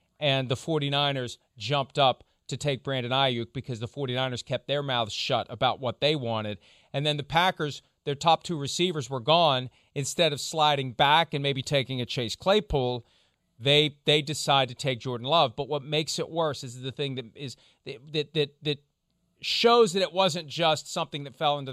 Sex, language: male, English